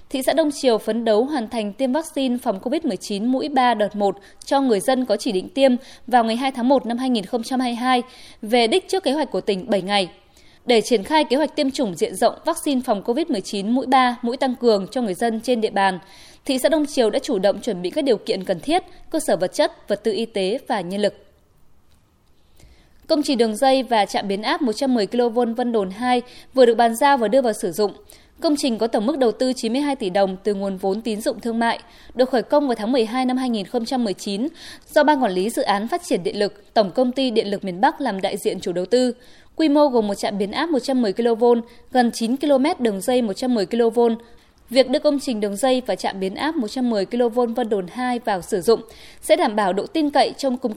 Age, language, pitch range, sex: 20-39, Vietnamese, 210-270 Hz, female